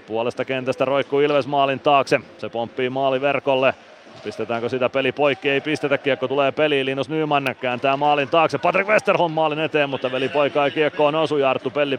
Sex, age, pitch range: male, 30-49, 130-145 Hz